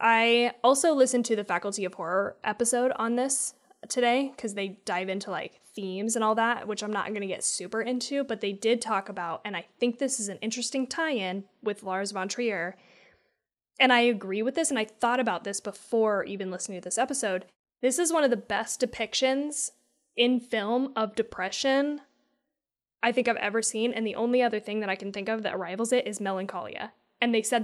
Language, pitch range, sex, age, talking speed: English, 205-250 Hz, female, 10-29, 210 wpm